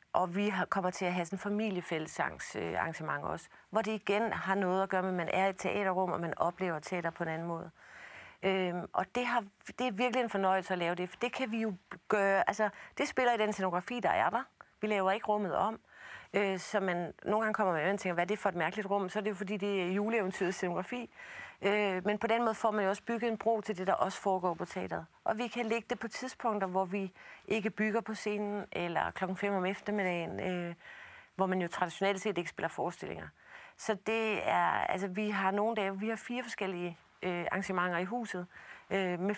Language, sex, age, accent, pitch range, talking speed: Danish, female, 40-59, native, 185-225 Hz, 225 wpm